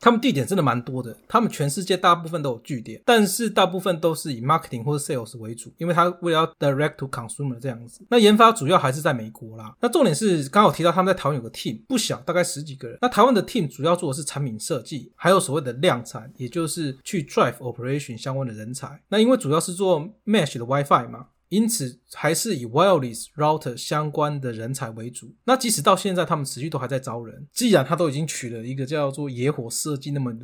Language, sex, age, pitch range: Chinese, male, 20-39, 125-175 Hz